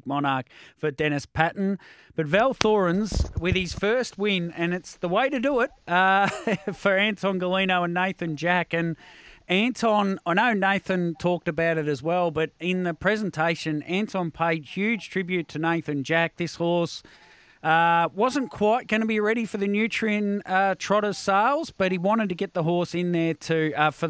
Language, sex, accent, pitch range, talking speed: English, male, Australian, 155-190 Hz, 180 wpm